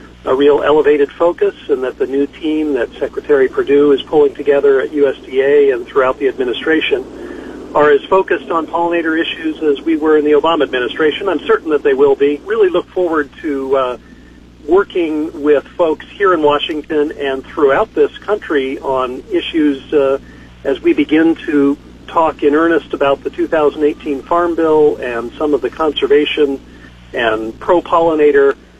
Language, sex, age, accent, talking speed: English, male, 50-69, American, 160 wpm